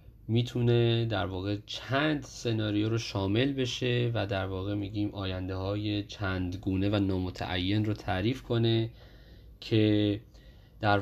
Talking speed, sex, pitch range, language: 125 wpm, male, 100-120 Hz, Persian